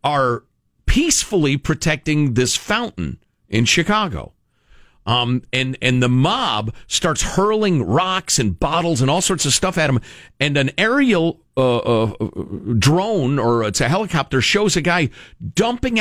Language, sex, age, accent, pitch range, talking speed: English, male, 50-69, American, 120-185 Hz, 140 wpm